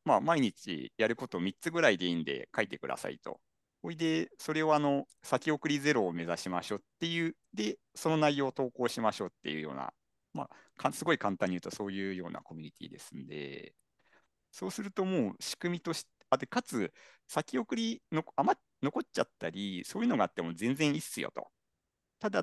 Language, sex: Japanese, male